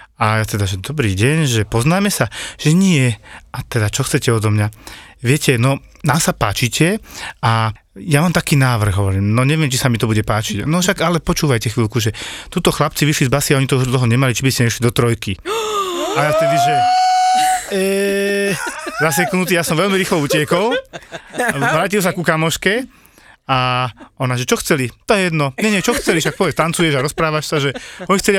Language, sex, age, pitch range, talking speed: Slovak, male, 30-49, 125-175 Hz, 195 wpm